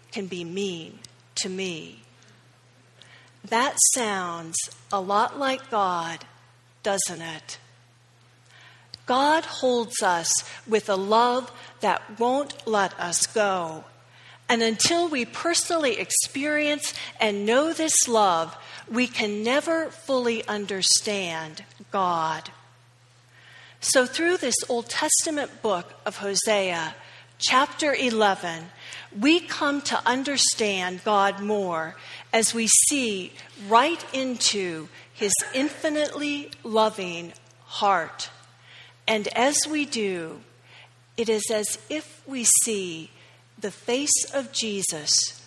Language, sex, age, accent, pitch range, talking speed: English, female, 50-69, American, 160-250 Hz, 105 wpm